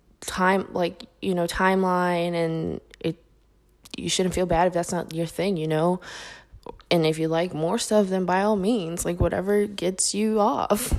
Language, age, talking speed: English, 20-39, 180 wpm